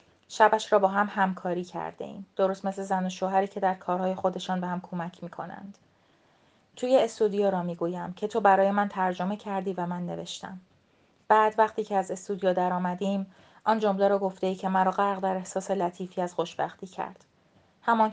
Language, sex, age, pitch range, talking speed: Persian, female, 30-49, 185-200 Hz, 190 wpm